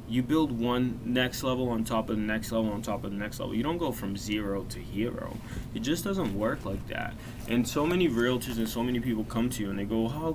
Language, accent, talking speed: English, American, 260 wpm